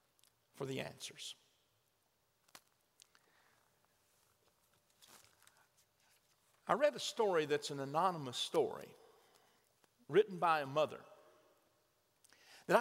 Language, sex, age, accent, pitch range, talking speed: English, male, 50-69, American, 155-225 Hz, 75 wpm